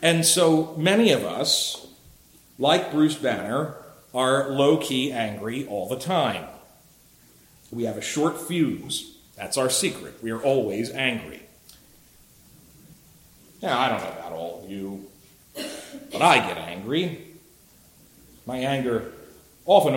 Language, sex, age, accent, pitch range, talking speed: English, male, 40-59, American, 110-165 Hz, 125 wpm